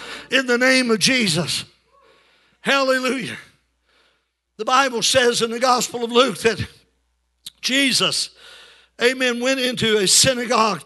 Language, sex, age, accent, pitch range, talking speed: English, male, 50-69, American, 225-265 Hz, 115 wpm